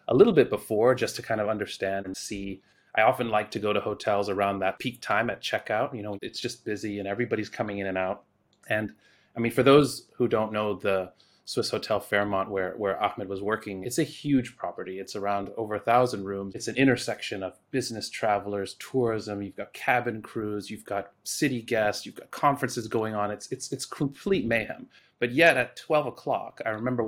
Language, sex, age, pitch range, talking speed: English, male, 30-49, 100-120 Hz, 210 wpm